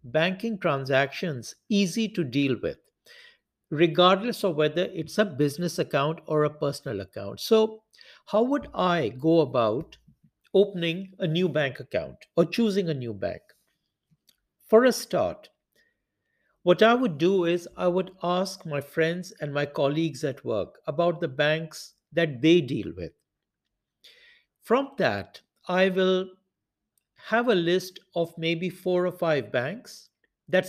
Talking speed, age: 140 wpm, 60-79